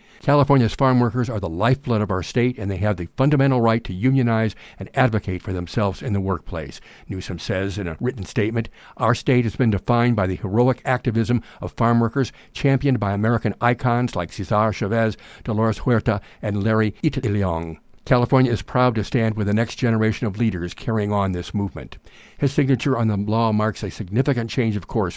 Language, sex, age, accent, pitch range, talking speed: English, male, 60-79, American, 100-125 Hz, 190 wpm